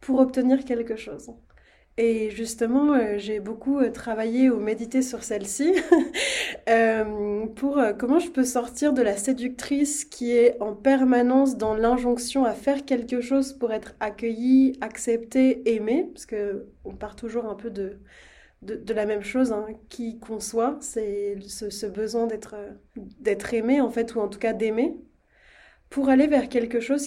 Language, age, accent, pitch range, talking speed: French, 20-39, French, 220-265 Hz, 165 wpm